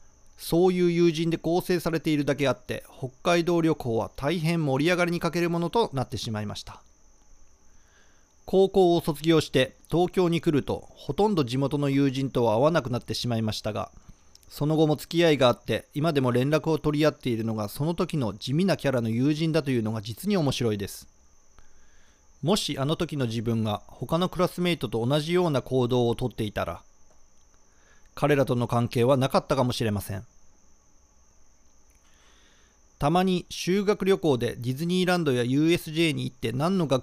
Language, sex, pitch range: Japanese, male, 110-160 Hz